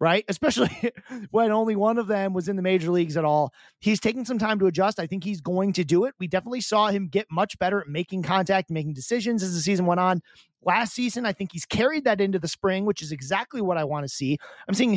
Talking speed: 255 wpm